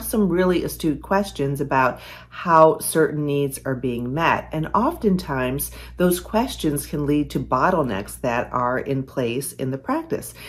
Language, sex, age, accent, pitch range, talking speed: English, female, 40-59, American, 130-175 Hz, 150 wpm